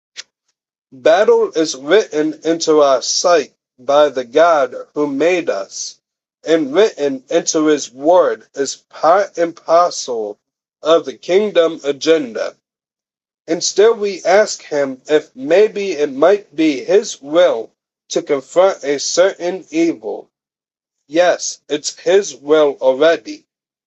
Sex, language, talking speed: male, English, 115 wpm